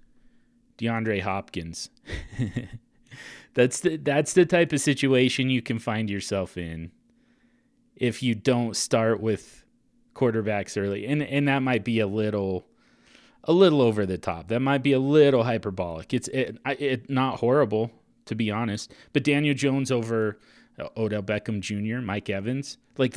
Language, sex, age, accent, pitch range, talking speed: English, male, 30-49, American, 110-140 Hz, 150 wpm